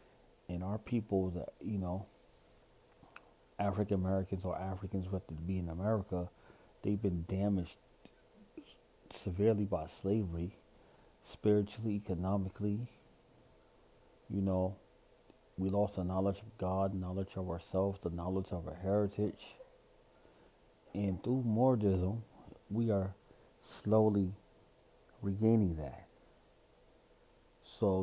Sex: male